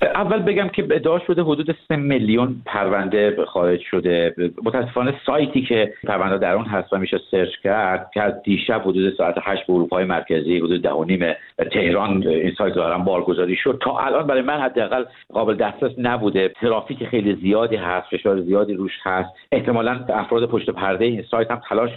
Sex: male